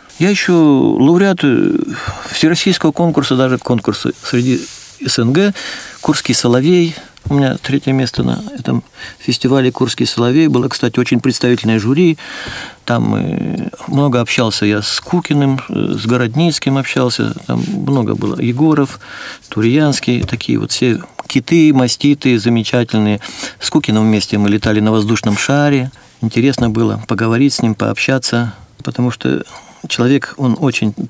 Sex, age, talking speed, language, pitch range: male, 50-69, 125 wpm, Russian, 115-160 Hz